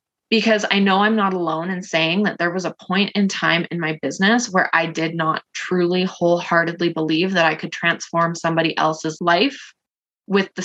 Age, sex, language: 20-39, female, English